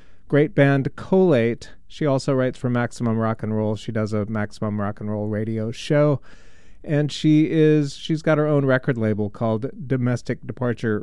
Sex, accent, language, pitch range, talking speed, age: male, American, English, 115-155 Hz, 175 wpm, 40-59